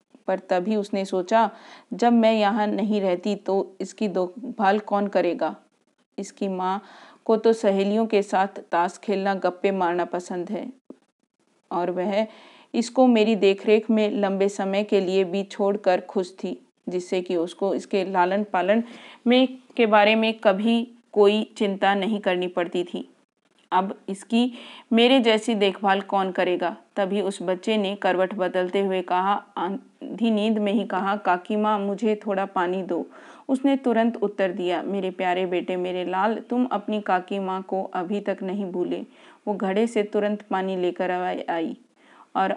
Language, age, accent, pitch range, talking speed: Hindi, 40-59, native, 185-220 Hz, 155 wpm